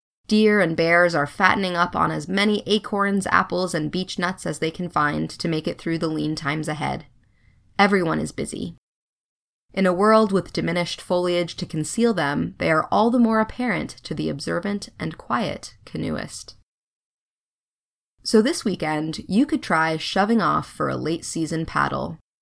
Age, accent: 20-39, American